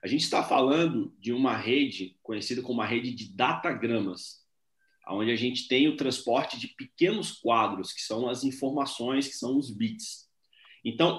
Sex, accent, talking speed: male, Brazilian, 165 wpm